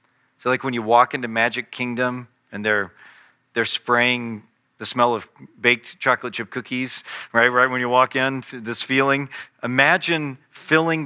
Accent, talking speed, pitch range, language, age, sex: American, 155 wpm, 115-135 Hz, English, 40-59, male